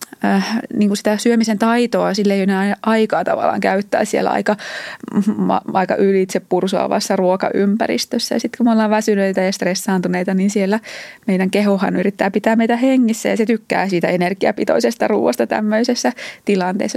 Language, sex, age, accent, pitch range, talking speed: Finnish, female, 20-39, native, 190-225 Hz, 145 wpm